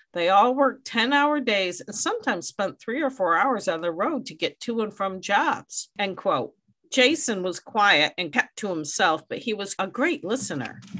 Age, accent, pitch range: 50-69, American, 170-260 Hz